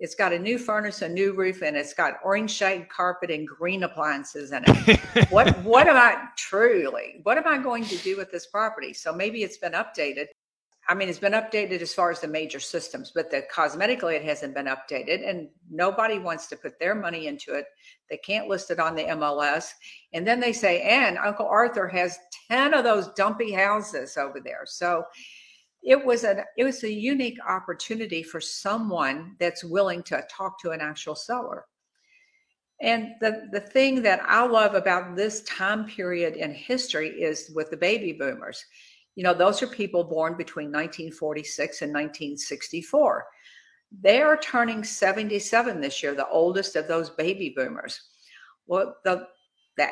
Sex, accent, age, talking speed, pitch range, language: female, American, 50-69, 175 wpm, 165-220 Hz, English